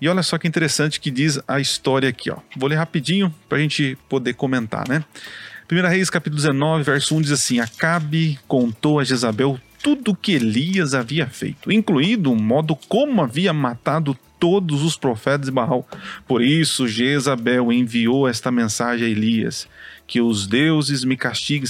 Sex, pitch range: male, 125-175 Hz